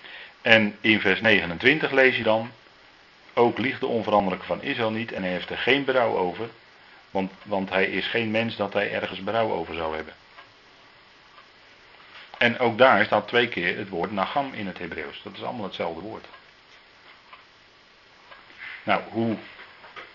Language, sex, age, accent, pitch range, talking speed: Dutch, male, 40-59, Dutch, 95-115 Hz, 160 wpm